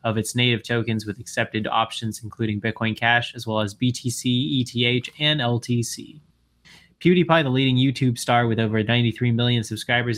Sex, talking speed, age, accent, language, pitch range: male, 160 wpm, 20-39, American, English, 110-125 Hz